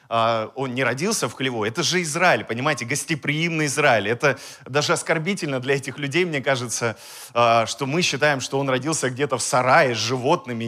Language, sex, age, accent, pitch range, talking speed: Russian, male, 30-49, native, 130-180 Hz, 170 wpm